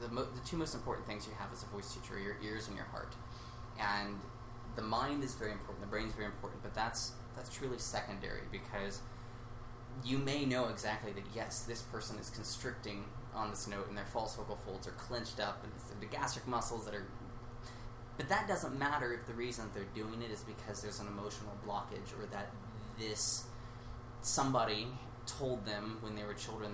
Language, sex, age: English, male, 20-39